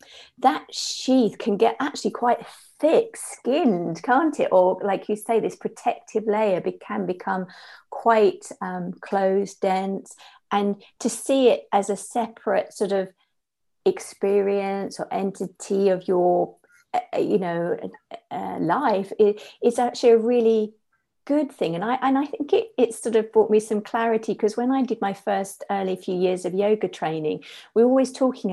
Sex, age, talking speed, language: female, 50-69, 160 wpm, English